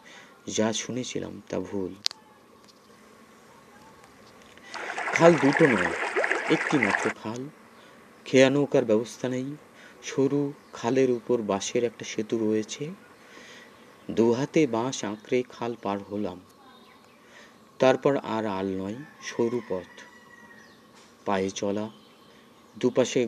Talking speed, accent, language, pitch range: 90 wpm, native, Bengali, 100-135 Hz